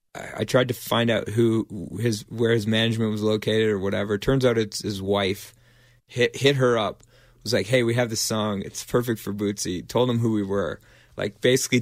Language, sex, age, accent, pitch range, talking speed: English, male, 20-39, American, 110-130 Hz, 215 wpm